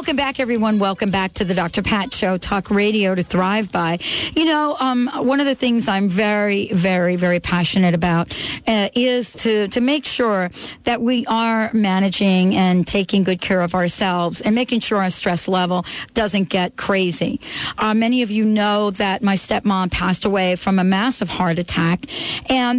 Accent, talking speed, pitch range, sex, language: American, 180 wpm, 190-235 Hz, female, English